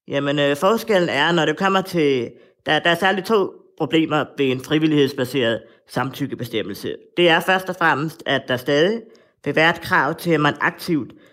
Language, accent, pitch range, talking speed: Danish, native, 140-170 Hz, 180 wpm